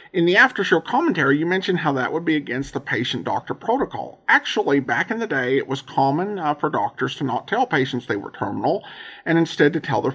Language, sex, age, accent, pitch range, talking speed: English, male, 50-69, American, 135-170 Hz, 225 wpm